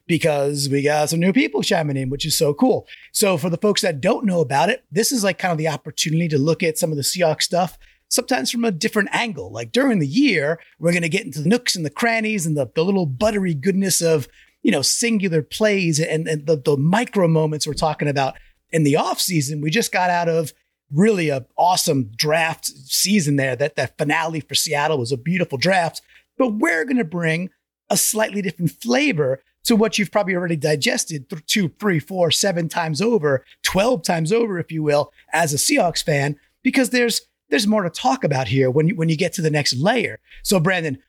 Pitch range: 150-215 Hz